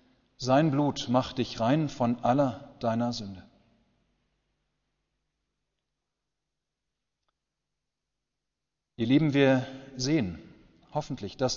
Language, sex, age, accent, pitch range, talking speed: German, male, 40-59, German, 130-155 Hz, 80 wpm